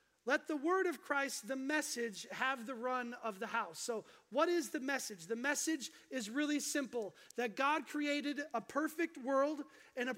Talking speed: 185 wpm